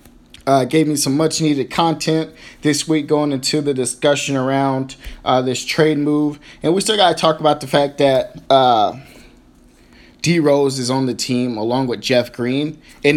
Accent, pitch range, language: American, 130-155 Hz, English